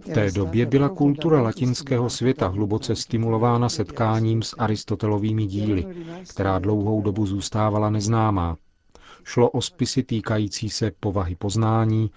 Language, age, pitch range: Czech, 40-59, 100-120 Hz